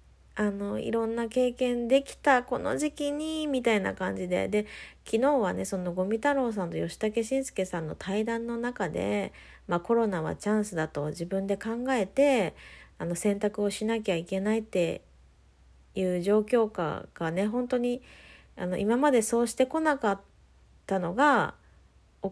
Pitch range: 170-240 Hz